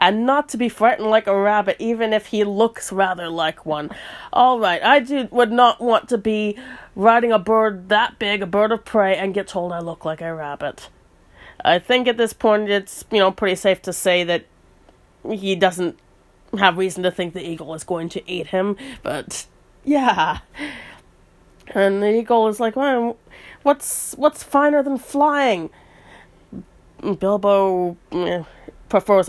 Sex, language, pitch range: female, English, 170-215 Hz